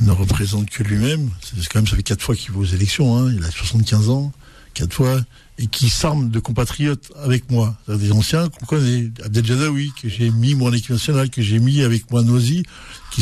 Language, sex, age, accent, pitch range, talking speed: French, male, 60-79, French, 115-140 Hz, 220 wpm